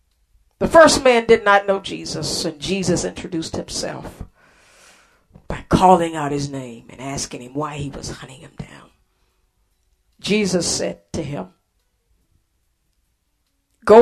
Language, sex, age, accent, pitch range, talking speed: English, female, 50-69, American, 145-205 Hz, 130 wpm